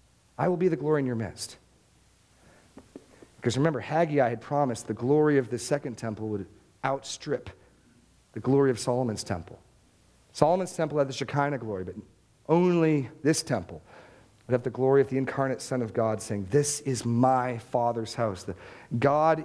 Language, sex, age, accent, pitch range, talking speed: English, male, 40-59, American, 115-170 Hz, 165 wpm